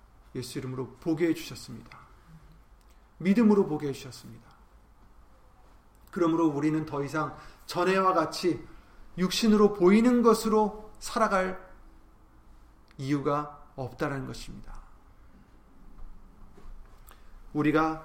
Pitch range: 105-175 Hz